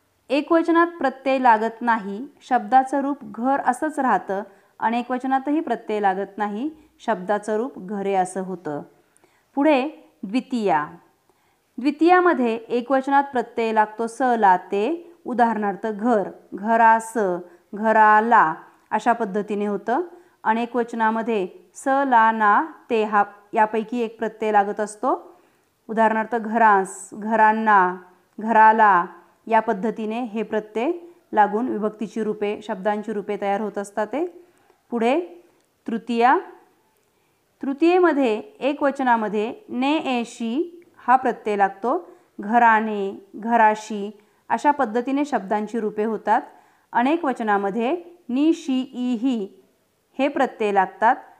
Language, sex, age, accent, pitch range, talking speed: Marathi, female, 30-49, native, 210-265 Hz, 100 wpm